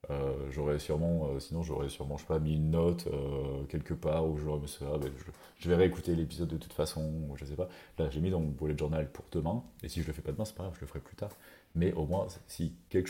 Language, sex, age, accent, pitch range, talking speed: French, male, 30-49, French, 75-90 Hz, 290 wpm